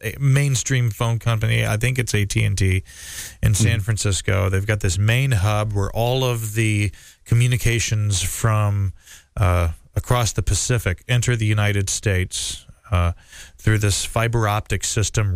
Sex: male